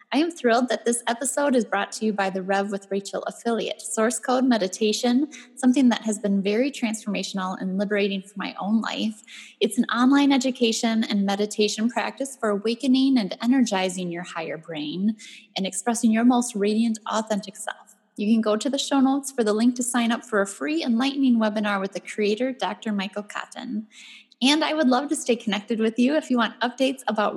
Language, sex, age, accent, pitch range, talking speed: English, female, 10-29, American, 195-240 Hz, 195 wpm